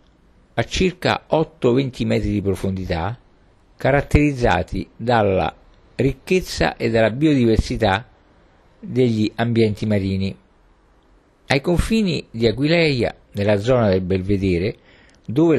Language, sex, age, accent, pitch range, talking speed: Italian, male, 50-69, native, 100-135 Hz, 95 wpm